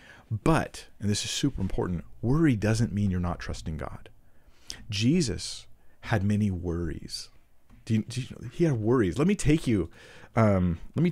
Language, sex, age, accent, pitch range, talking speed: English, male, 40-59, American, 90-115 Hz, 165 wpm